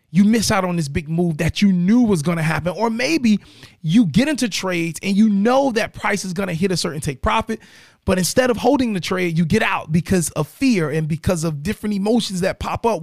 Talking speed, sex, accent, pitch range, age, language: 235 wpm, male, American, 155-205 Hz, 30-49, English